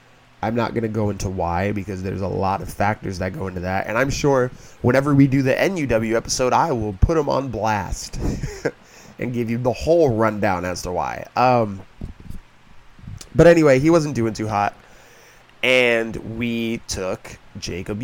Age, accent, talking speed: 20-39, American, 175 wpm